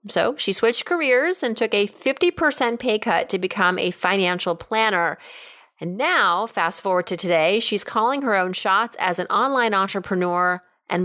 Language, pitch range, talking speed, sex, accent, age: English, 185-255 Hz, 170 wpm, female, American, 30-49